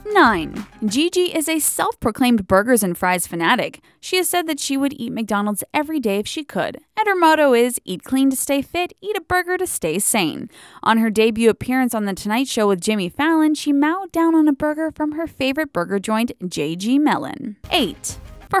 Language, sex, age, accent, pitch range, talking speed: English, female, 20-39, American, 225-315 Hz, 205 wpm